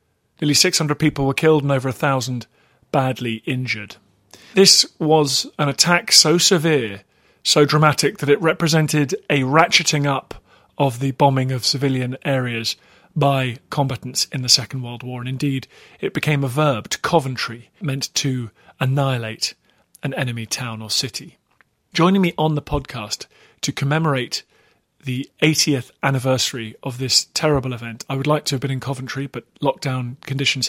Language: English